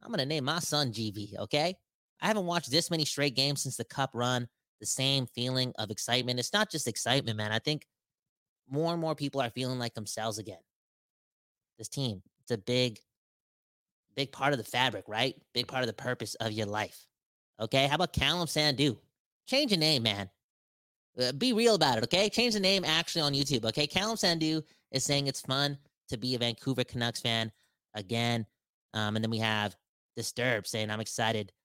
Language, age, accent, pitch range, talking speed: English, 20-39, American, 115-145 Hz, 195 wpm